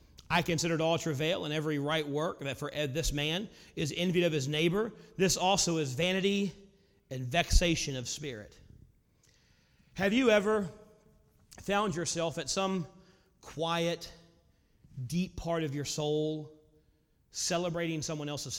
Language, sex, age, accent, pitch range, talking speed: English, male, 40-59, American, 135-175 Hz, 130 wpm